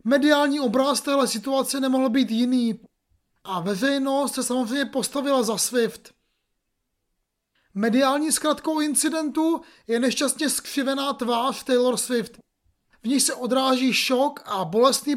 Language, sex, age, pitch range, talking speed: Czech, male, 30-49, 245-285 Hz, 120 wpm